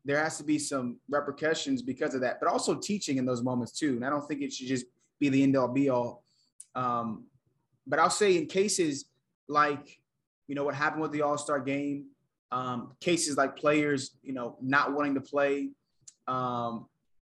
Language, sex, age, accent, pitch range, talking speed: English, male, 20-39, American, 135-165 Hz, 190 wpm